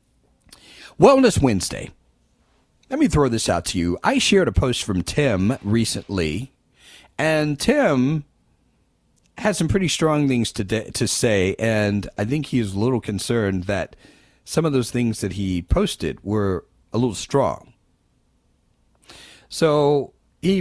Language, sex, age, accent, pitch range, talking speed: English, male, 40-59, American, 100-150 Hz, 145 wpm